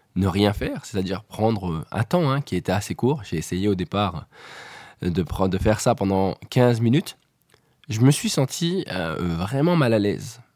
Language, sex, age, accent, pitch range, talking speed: French, male, 20-39, French, 100-135 Hz, 190 wpm